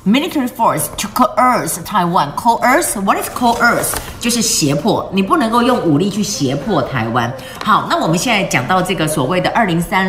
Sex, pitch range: female, 150-205 Hz